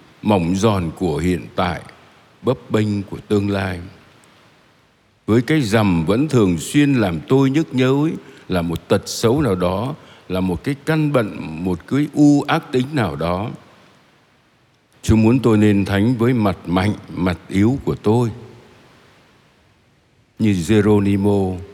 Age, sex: 60-79, male